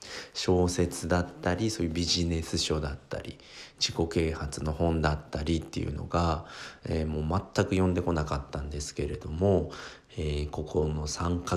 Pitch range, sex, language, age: 75-90 Hz, male, Japanese, 40-59